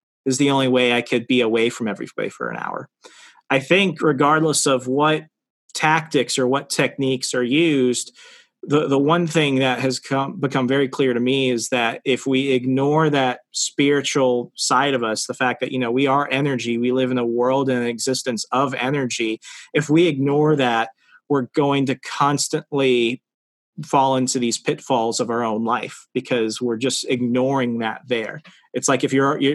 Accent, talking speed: American, 185 wpm